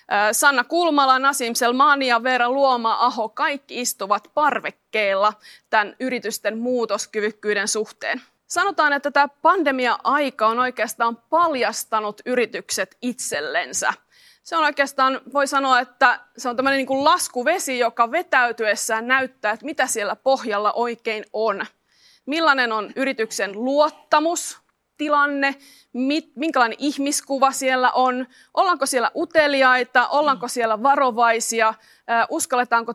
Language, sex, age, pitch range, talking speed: Finnish, female, 30-49, 230-280 Hz, 110 wpm